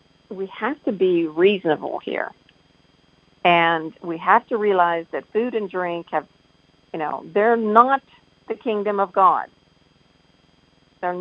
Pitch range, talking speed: 175-215 Hz, 135 wpm